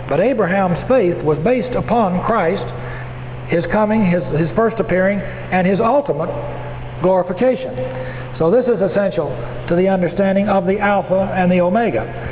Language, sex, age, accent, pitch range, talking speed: English, male, 60-79, American, 155-195 Hz, 145 wpm